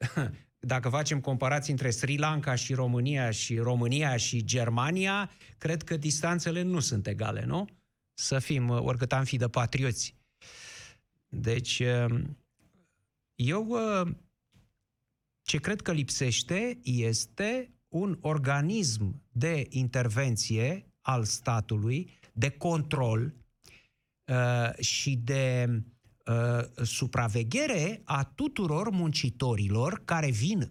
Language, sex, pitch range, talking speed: Romanian, male, 120-165 Hz, 95 wpm